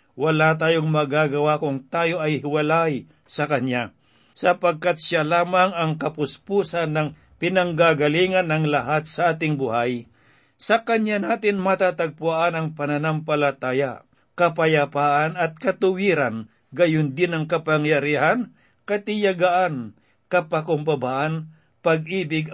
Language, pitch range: Filipino, 145-175 Hz